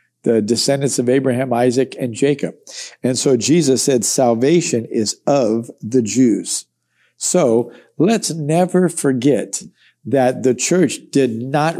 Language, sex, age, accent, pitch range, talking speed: English, male, 50-69, American, 115-140 Hz, 125 wpm